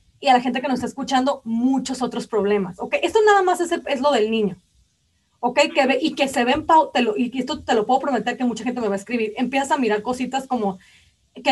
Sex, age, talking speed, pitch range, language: female, 30-49, 255 wpm, 220-280 Hz, Spanish